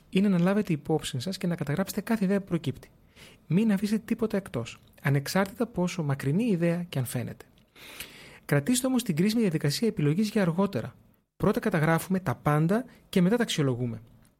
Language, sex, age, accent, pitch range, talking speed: Greek, male, 30-49, native, 145-195 Hz, 175 wpm